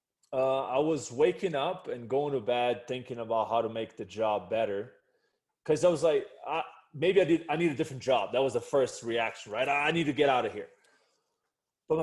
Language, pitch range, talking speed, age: English, 125-185 Hz, 225 wpm, 20-39